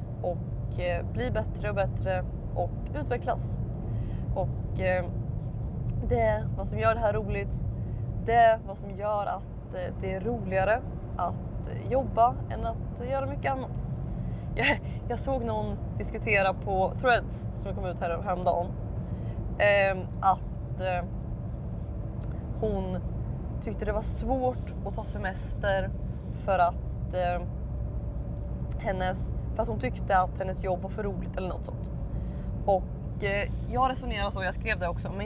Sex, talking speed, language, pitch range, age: female, 135 wpm, Swedish, 105-145 Hz, 20-39